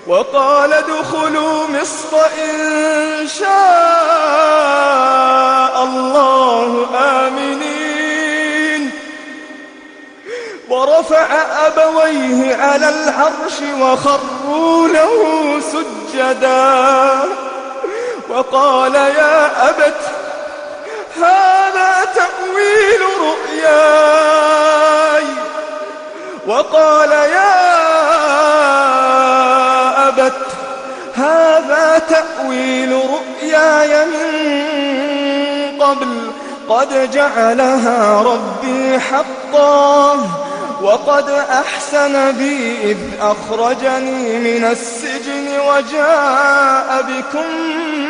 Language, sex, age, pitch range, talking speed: English, male, 30-49, 265-310 Hz, 50 wpm